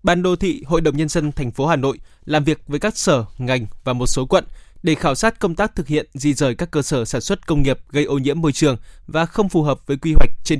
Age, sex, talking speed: 20-39, male, 285 wpm